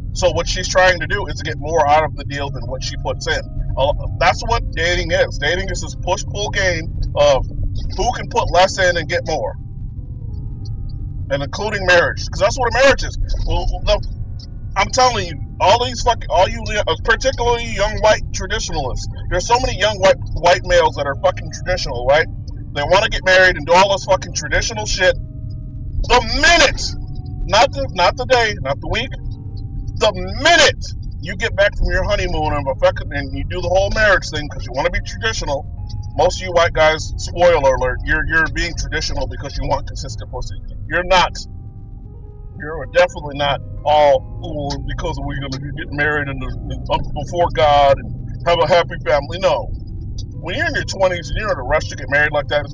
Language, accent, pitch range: English, American, 105-150 Hz